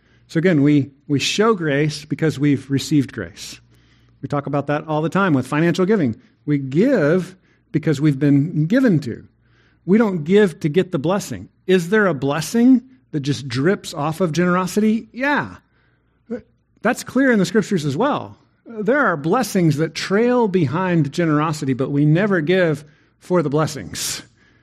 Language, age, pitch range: English, 50-69, 135-195 Hz